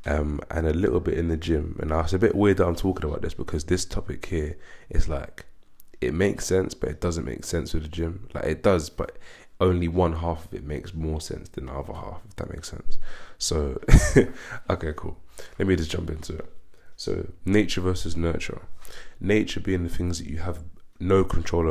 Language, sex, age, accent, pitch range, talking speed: English, male, 20-39, British, 75-90 Hz, 215 wpm